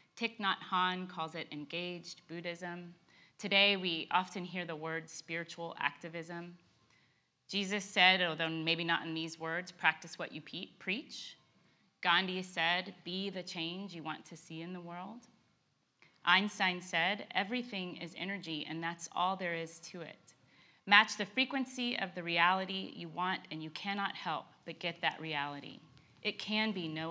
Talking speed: 155 wpm